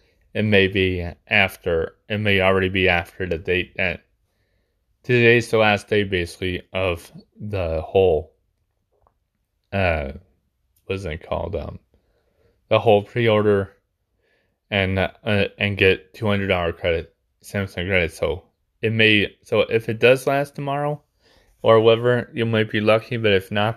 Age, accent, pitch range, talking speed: 20-39, American, 95-110 Hz, 140 wpm